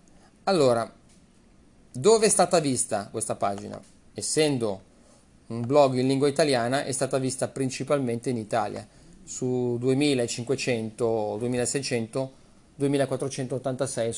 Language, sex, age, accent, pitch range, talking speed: Italian, male, 30-49, native, 115-145 Hz, 95 wpm